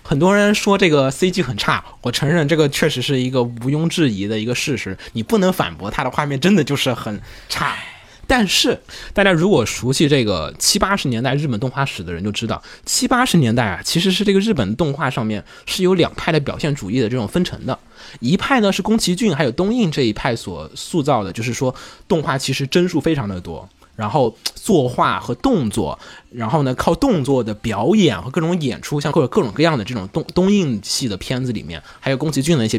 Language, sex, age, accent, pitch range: Chinese, male, 20-39, native, 115-170 Hz